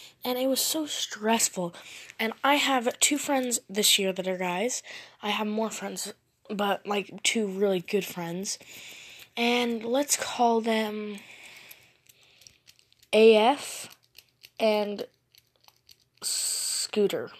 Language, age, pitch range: English, 10-29, 190-240 Hz